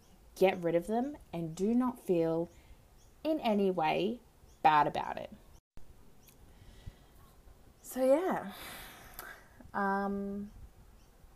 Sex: female